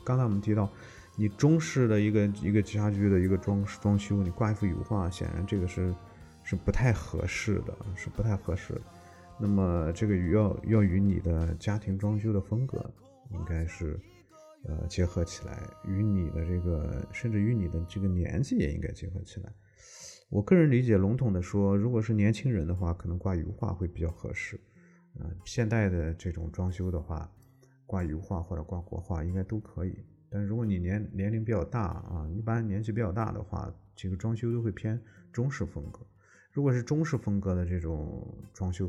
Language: Chinese